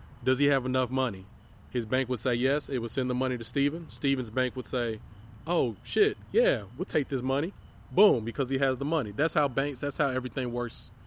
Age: 20-39